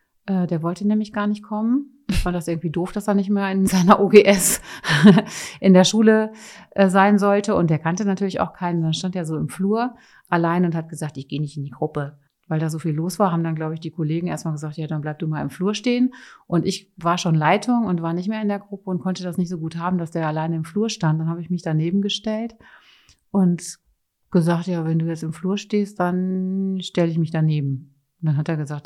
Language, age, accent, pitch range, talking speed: German, 30-49, German, 160-195 Hz, 245 wpm